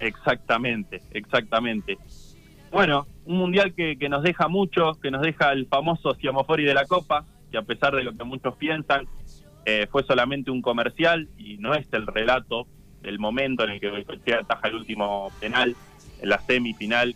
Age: 20-39